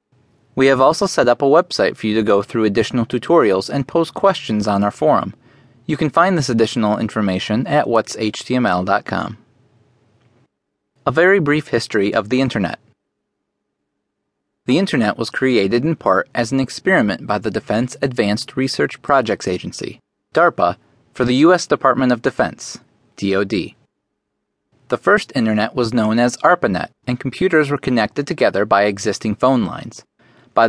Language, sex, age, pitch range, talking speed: English, male, 30-49, 110-135 Hz, 150 wpm